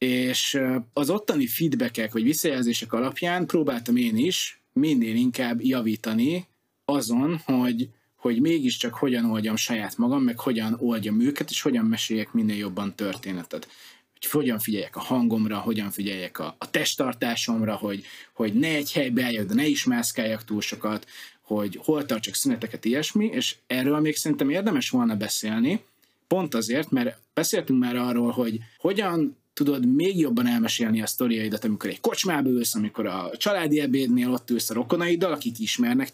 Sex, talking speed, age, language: male, 150 wpm, 30-49, Hungarian